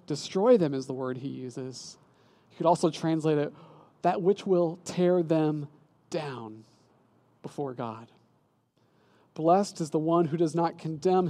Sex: male